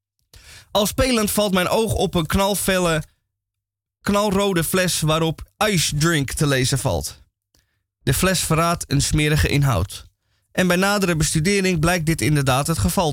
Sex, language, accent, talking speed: male, Dutch, Dutch, 140 wpm